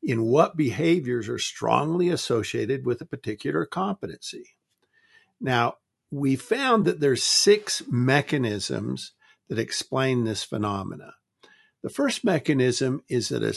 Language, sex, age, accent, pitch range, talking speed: English, male, 50-69, American, 120-185 Hz, 120 wpm